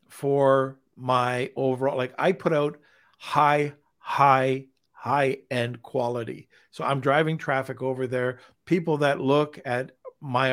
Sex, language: male, English